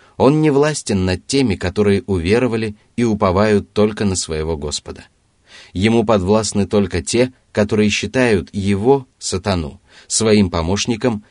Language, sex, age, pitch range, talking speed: Russian, male, 30-49, 90-115 Hz, 120 wpm